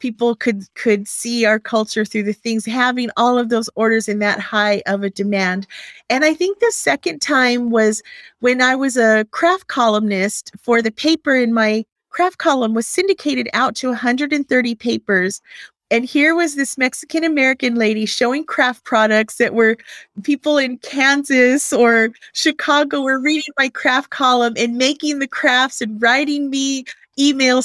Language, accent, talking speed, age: English, American, 165 wpm, 40-59